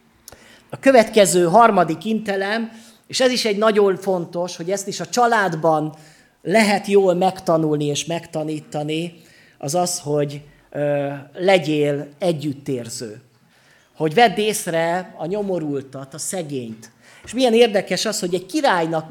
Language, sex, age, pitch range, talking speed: Hungarian, male, 30-49, 150-195 Hz, 120 wpm